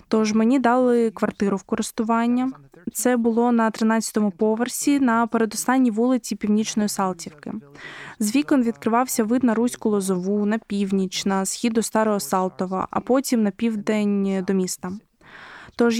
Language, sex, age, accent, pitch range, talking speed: Ukrainian, female, 20-39, native, 210-245 Hz, 140 wpm